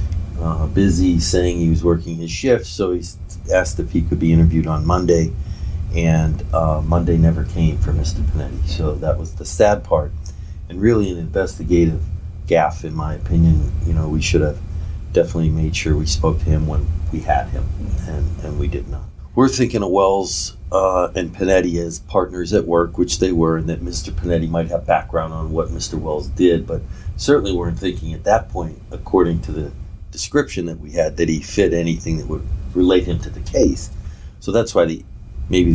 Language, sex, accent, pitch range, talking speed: English, male, American, 80-90 Hz, 195 wpm